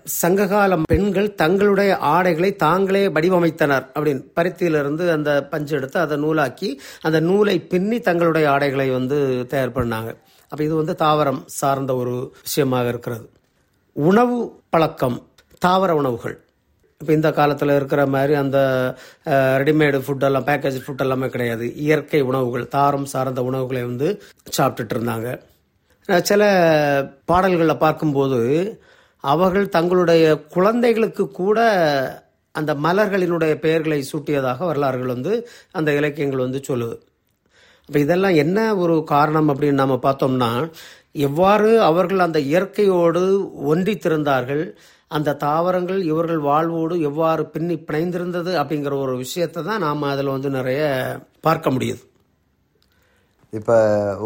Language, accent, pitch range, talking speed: Tamil, native, 135-175 Hz, 75 wpm